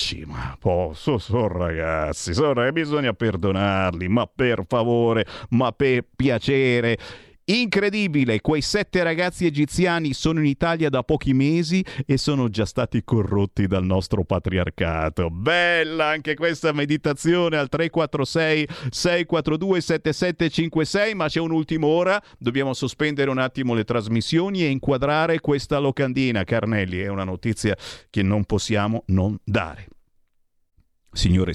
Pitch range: 105-165 Hz